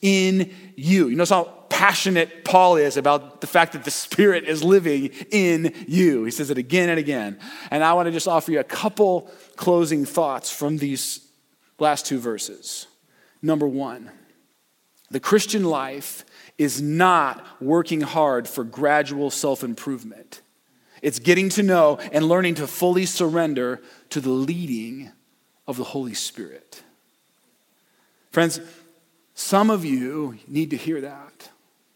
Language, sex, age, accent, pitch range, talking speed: English, male, 40-59, American, 155-220 Hz, 145 wpm